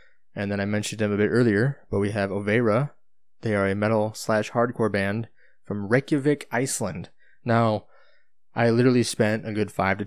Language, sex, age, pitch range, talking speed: English, male, 20-39, 95-115 Hz, 180 wpm